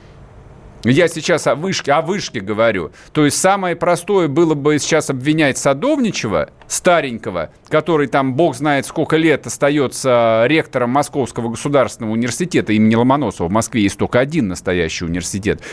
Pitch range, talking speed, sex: 115-185 Hz, 135 wpm, male